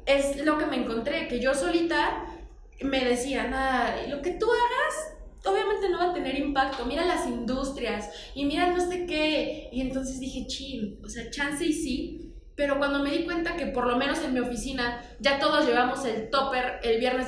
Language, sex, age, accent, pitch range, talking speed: Spanish, female, 20-39, Mexican, 245-315 Hz, 200 wpm